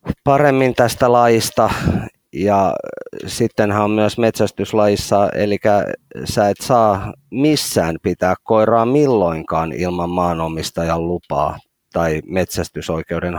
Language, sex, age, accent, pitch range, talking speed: Finnish, male, 30-49, native, 85-100 Hz, 95 wpm